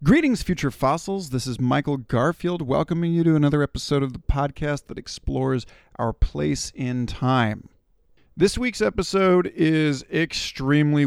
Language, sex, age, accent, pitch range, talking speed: English, male, 40-59, American, 125-160 Hz, 140 wpm